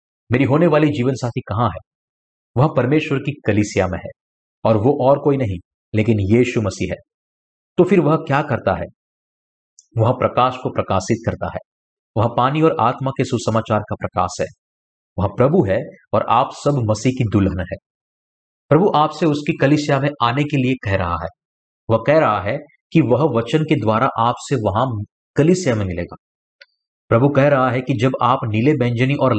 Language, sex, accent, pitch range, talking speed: Hindi, male, native, 105-145 Hz, 180 wpm